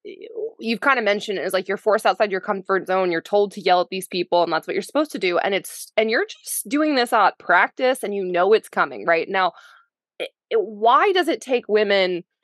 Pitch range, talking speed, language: 180-235 Hz, 235 wpm, English